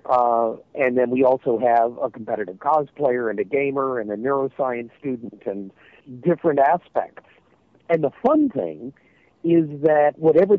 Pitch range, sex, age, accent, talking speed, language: 125-160 Hz, male, 50-69, American, 145 wpm, English